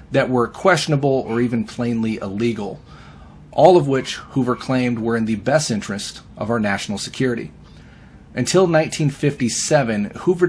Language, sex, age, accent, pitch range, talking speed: English, male, 30-49, American, 105-125 Hz, 135 wpm